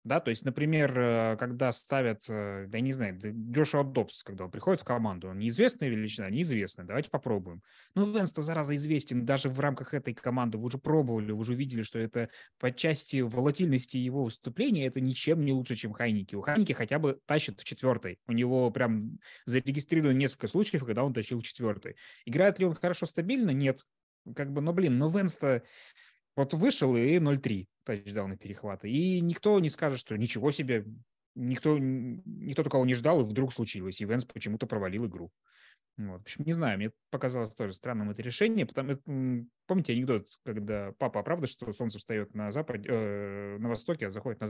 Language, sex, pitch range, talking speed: Russian, male, 110-145 Hz, 180 wpm